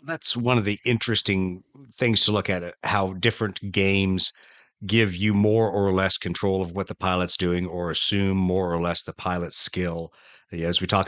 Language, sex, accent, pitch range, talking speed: English, male, American, 90-110 Hz, 185 wpm